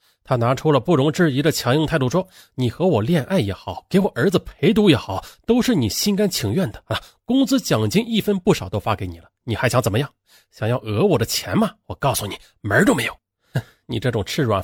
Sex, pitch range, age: male, 110-180 Hz, 30-49